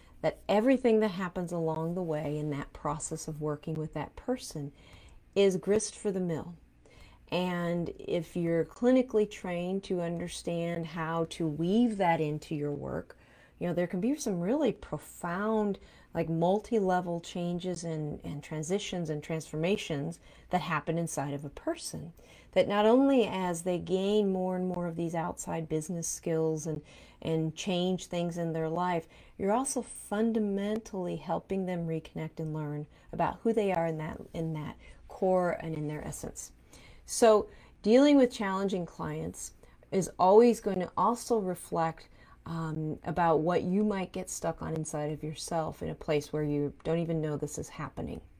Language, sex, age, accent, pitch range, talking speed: English, female, 40-59, American, 160-195 Hz, 160 wpm